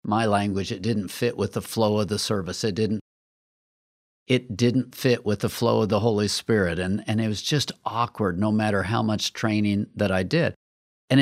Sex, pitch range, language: male, 110-145 Hz, English